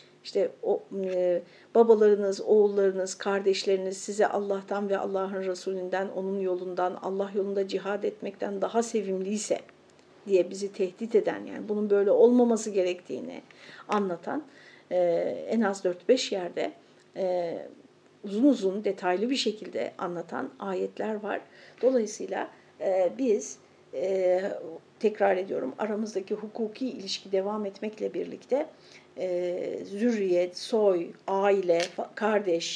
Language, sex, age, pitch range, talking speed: Turkish, female, 50-69, 190-235 Hz, 110 wpm